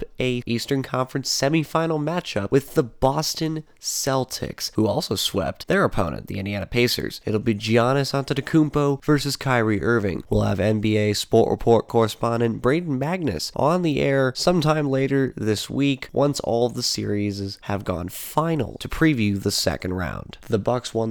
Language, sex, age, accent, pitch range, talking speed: English, male, 20-39, American, 105-135 Hz, 155 wpm